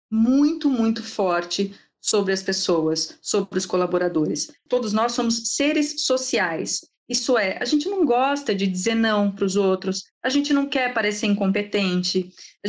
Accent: Brazilian